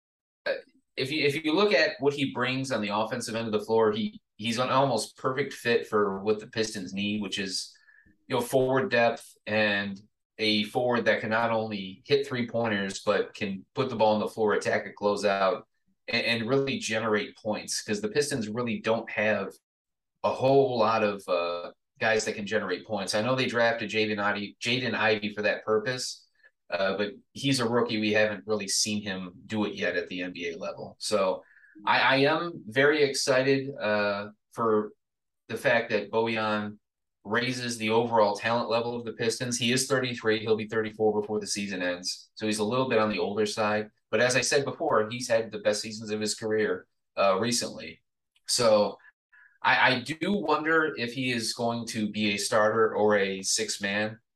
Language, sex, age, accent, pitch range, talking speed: English, male, 30-49, American, 105-125 Hz, 190 wpm